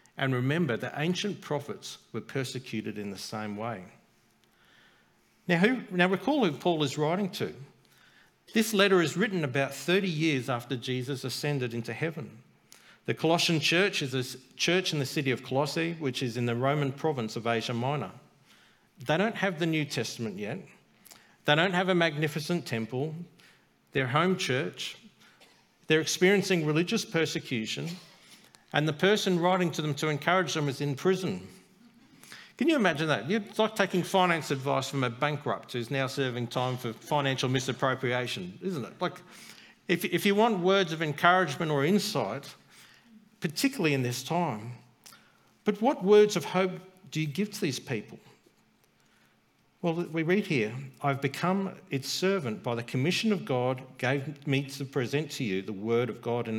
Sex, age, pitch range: male, 50-69, 130-185 Hz